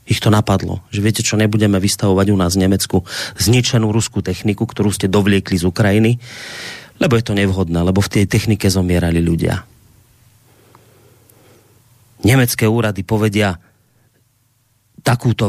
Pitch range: 100-120 Hz